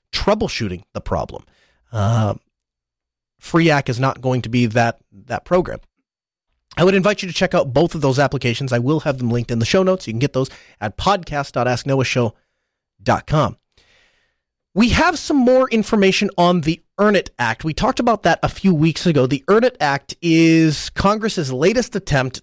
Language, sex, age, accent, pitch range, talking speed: English, male, 30-49, American, 135-195 Hz, 175 wpm